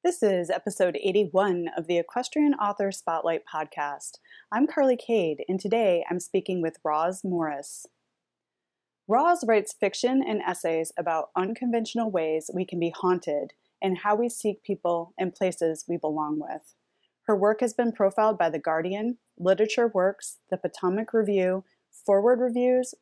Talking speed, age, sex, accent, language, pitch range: 150 wpm, 30-49, female, American, English, 170-210 Hz